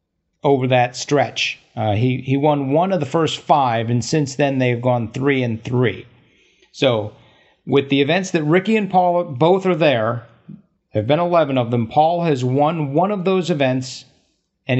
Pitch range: 120-155 Hz